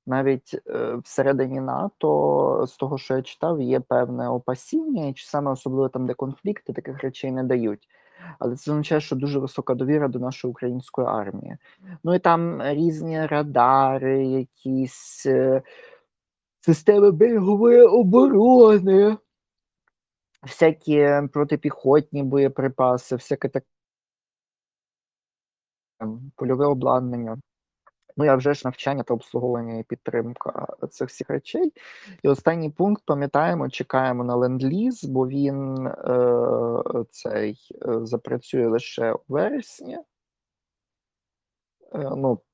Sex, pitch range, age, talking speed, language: male, 125-155 Hz, 20-39, 110 wpm, Ukrainian